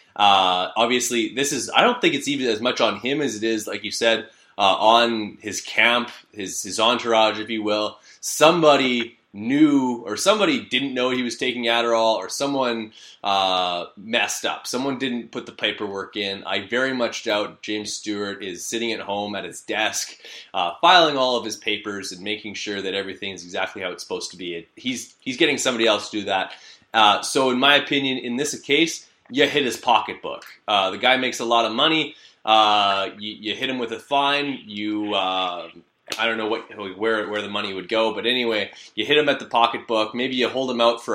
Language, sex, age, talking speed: English, male, 20-39, 210 wpm